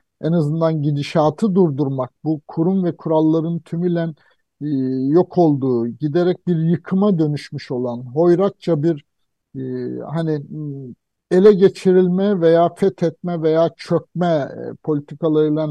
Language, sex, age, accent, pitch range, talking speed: Turkish, male, 50-69, native, 145-175 Hz, 110 wpm